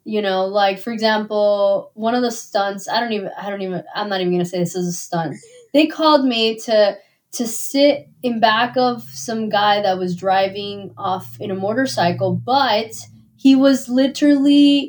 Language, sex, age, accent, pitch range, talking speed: English, female, 20-39, American, 210-280 Hz, 190 wpm